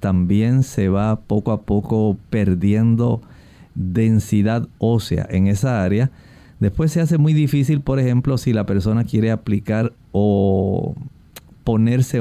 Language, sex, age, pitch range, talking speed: Spanish, male, 50-69, 100-125 Hz, 130 wpm